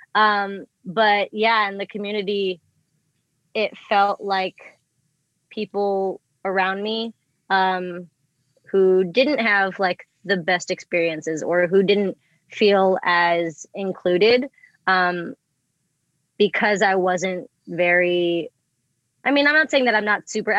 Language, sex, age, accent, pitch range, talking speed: English, female, 20-39, American, 175-205 Hz, 115 wpm